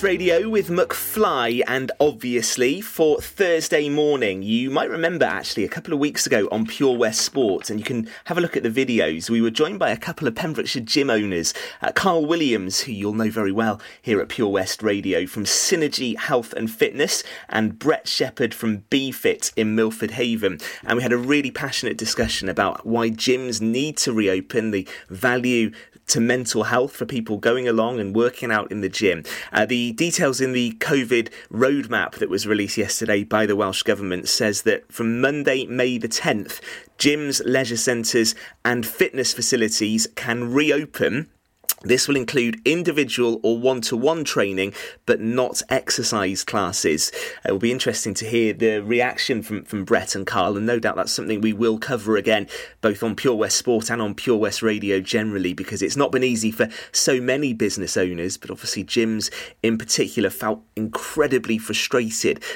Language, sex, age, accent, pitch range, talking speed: English, male, 30-49, British, 105-125 Hz, 180 wpm